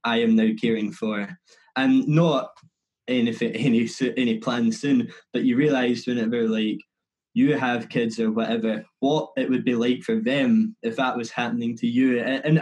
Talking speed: 170 wpm